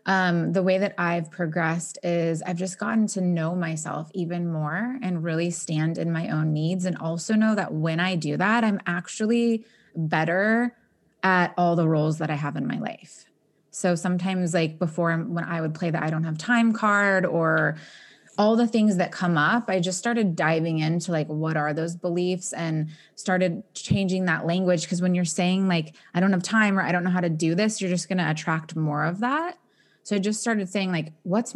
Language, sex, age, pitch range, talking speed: English, female, 20-39, 165-205 Hz, 210 wpm